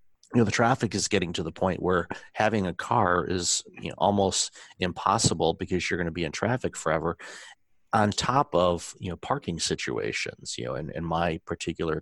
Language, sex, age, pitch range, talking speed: English, male, 40-59, 90-105 Hz, 185 wpm